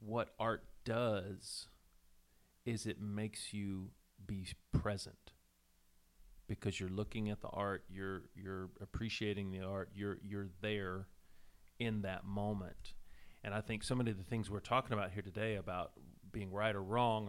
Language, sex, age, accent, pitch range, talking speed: English, male, 40-59, American, 95-110 Hz, 155 wpm